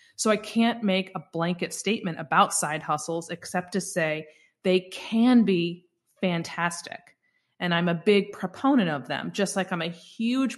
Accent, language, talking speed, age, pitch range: American, English, 165 wpm, 30-49, 155-190 Hz